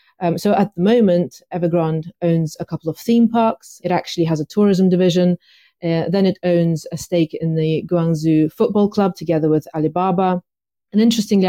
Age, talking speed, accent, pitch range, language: 30-49, 180 wpm, British, 165-190 Hz, English